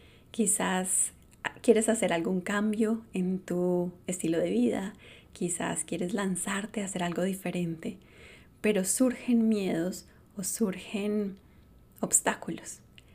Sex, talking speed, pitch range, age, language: female, 105 wpm, 180-225 Hz, 30-49, Spanish